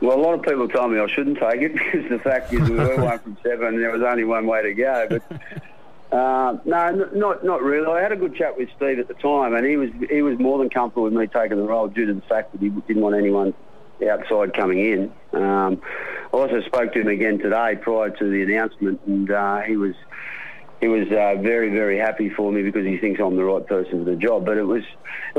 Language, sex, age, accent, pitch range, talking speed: English, male, 50-69, Australian, 100-120 Hz, 255 wpm